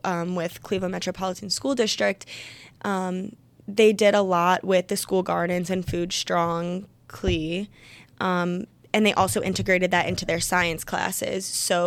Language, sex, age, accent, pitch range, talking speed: English, female, 10-29, American, 170-195 Hz, 145 wpm